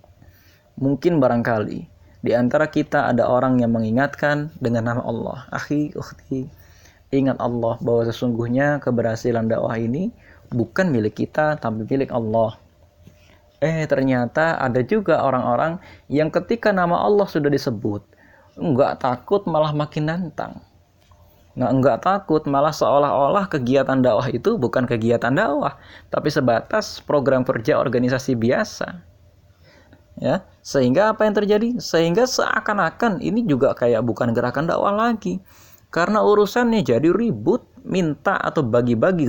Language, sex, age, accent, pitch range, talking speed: Indonesian, male, 20-39, native, 115-150 Hz, 125 wpm